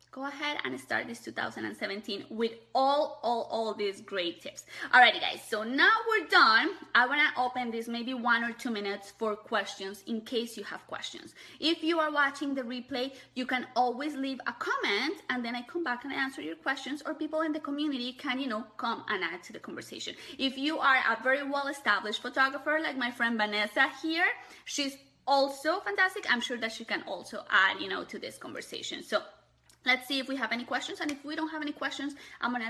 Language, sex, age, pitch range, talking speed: English, female, 20-39, 235-300 Hz, 215 wpm